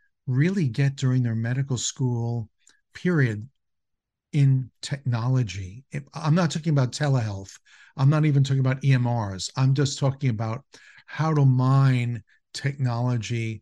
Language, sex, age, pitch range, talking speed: English, male, 50-69, 130-155 Hz, 125 wpm